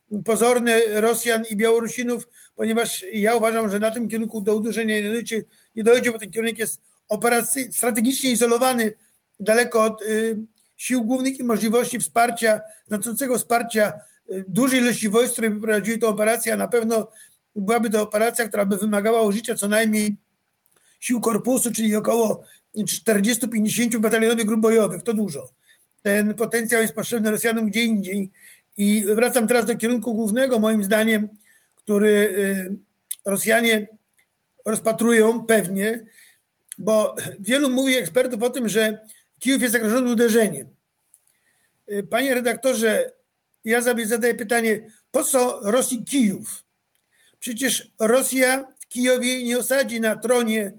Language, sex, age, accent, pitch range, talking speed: Polish, male, 50-69, native, 215-240 Hz, 130 wpm